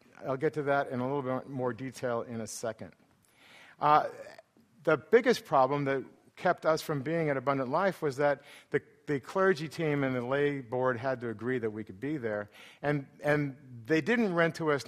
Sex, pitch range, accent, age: male, 120-150 Hz, American, 50-69